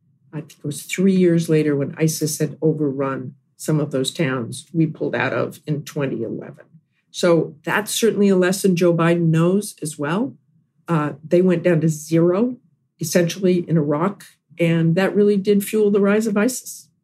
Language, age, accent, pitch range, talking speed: English, 50-69, American, 145-170 Hz, 175 wpm